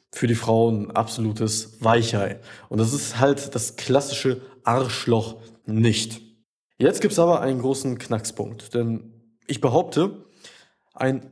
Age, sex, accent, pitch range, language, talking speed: 20-39, male, German, 115-135 Hz, German, 125 wpm